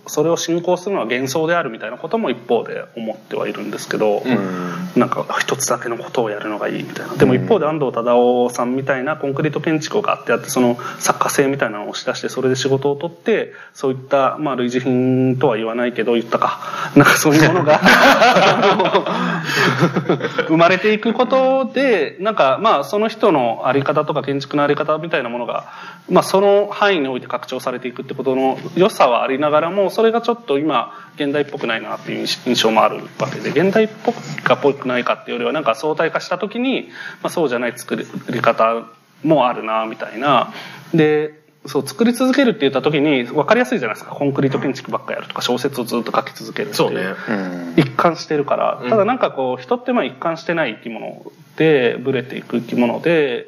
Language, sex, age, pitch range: Japanese, male, 20-39, 130-190 Hz